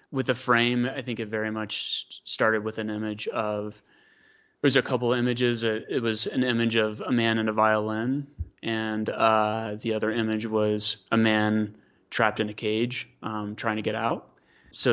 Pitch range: 105-120 Hz